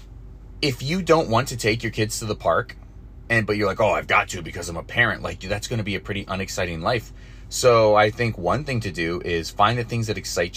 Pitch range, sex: 100-120 Hz, male